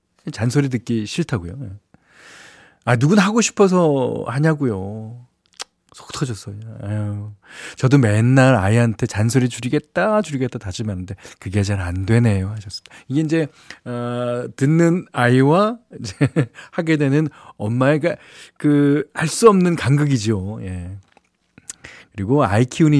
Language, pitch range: Korean, 105-150 Hz